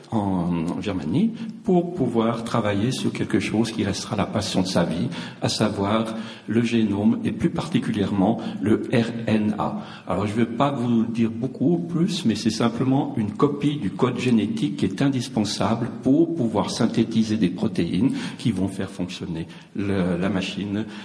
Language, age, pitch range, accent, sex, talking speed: French, 60-79, 100-125 Hz, French, male, 160 wpm